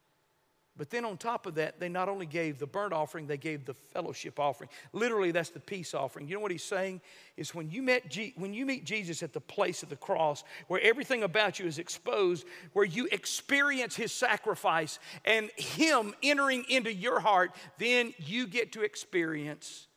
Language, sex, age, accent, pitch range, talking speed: English, male, 50-69, American, 190-290 Hz, 190 wpm